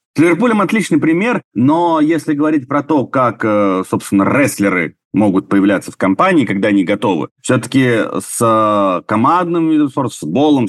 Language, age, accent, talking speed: Russian, 30-49, native, 135 wpm